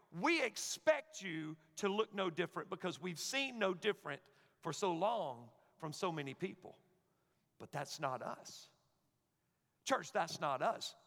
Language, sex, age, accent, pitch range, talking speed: English, male, 50-69, American, 155-210 Hz, 145 wpm